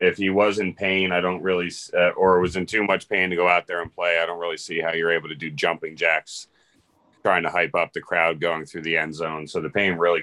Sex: male